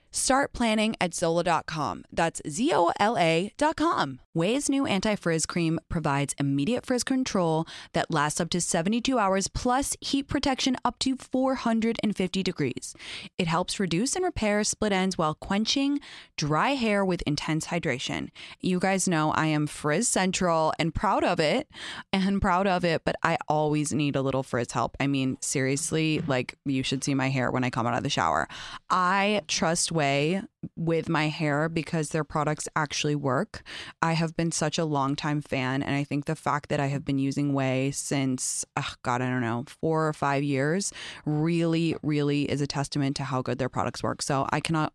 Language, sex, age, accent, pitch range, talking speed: English, female, 20-39, American, 140-195 Hz, 180 wpm